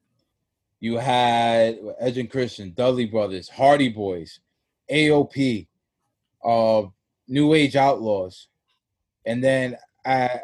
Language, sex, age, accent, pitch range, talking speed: English, male, 20-39, American, 120-150 Hz, 100 wpm